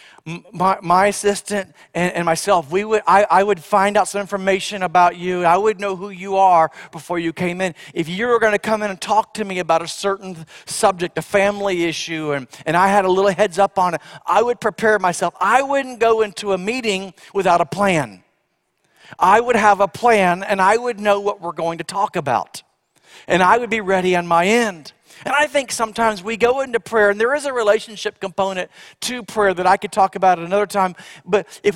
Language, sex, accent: English, male, American